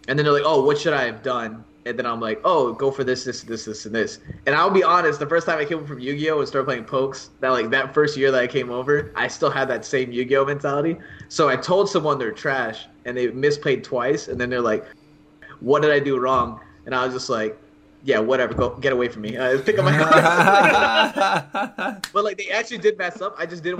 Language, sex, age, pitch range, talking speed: English, male, 20-39, 115-160 Hz, 245 wpm